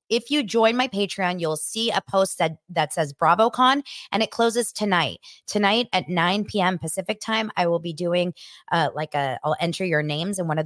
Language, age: English, 20-39